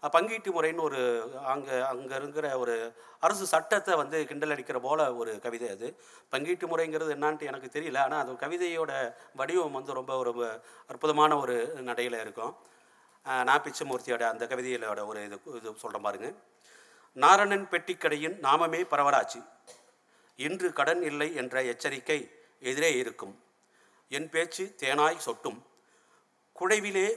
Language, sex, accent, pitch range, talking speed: Tamil, male, native, 130-180 Hz, 125 wpm